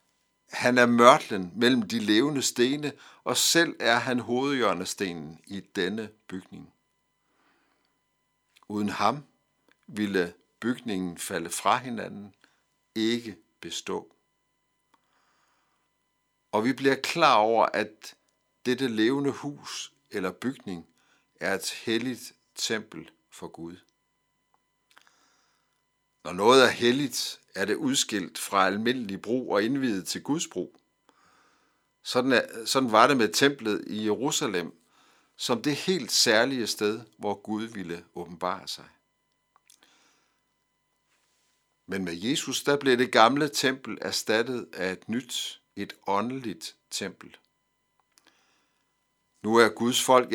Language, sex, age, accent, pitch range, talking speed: Danish, male, 60-79, native, 100-130 Hz, 110 wpm